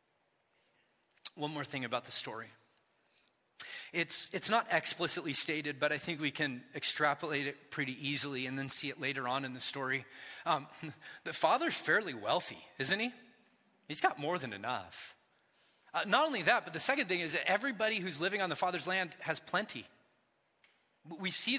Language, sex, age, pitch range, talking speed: English, male, 30-49, 150-230 Hz, 170 wpm